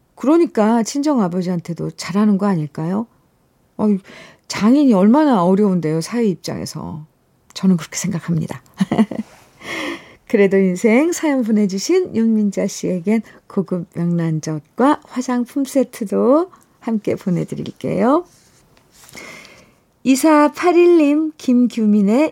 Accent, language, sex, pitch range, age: native, Korean, female, 180-255 Hz, 50-69